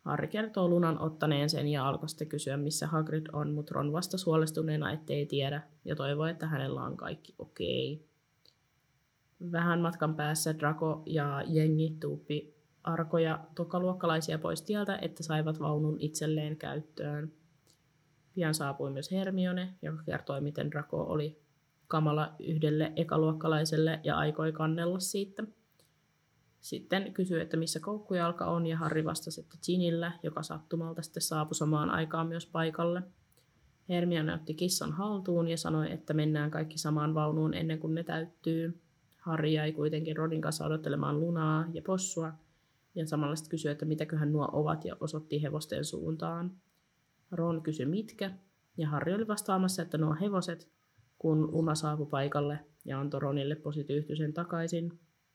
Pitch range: 150-170 Hz